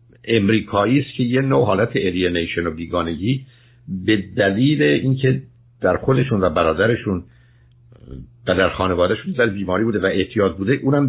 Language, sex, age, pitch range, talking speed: Persian, male, 60-79, 90-120 Hz, 135 wpm